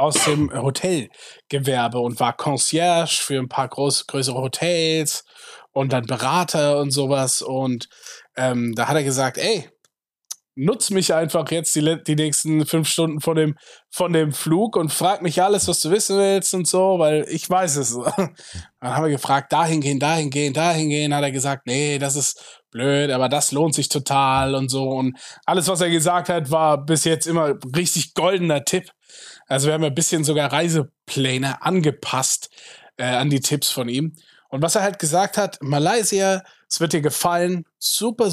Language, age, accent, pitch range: German, 20-39, German, 140-175 Hz